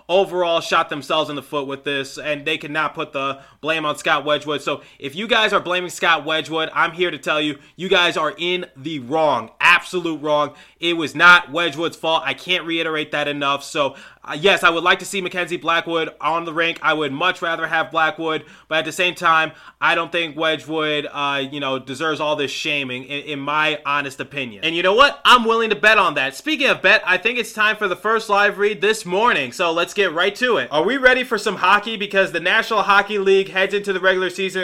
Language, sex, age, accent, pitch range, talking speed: English, male, 20-39, American, 160-210 Hz, 235 wpm